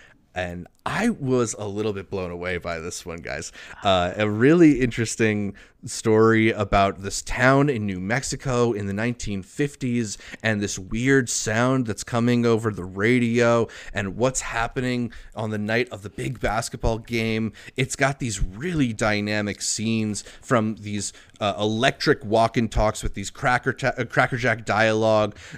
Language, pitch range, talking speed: English, 100-125 Hz, 155 wpm